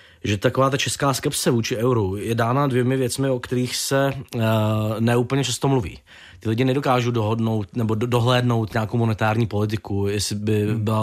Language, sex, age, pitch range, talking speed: Czech, male, 20-39, 110-125 Hz, 165 wpm